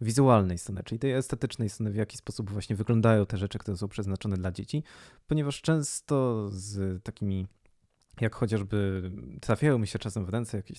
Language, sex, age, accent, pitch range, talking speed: Polish, male, 20-39, native, 100-115 Hz, 170 wpm